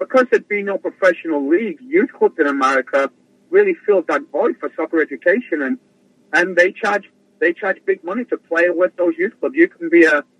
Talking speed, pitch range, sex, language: 200 wpm, 145-205 Hz, male, English